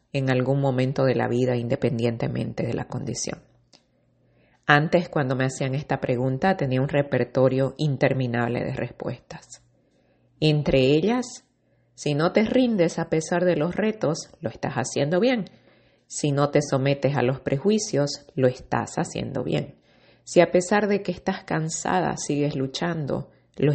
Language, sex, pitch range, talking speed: Spanish, female, 135-175 Hz, 145 wpm